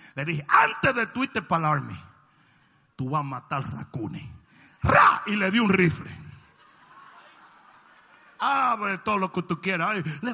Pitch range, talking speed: 155-250 Hz, 145 wpm